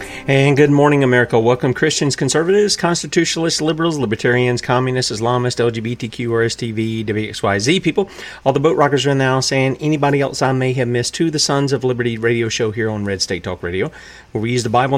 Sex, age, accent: male, 40-59, American